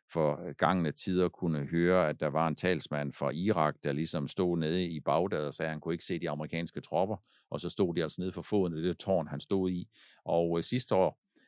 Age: 50-69